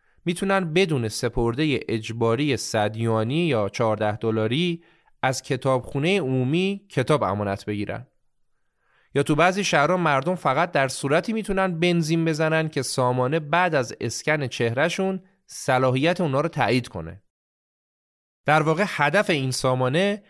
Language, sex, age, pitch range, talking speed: Persian, male, 30-49, 115-155 Hz, 120 wpm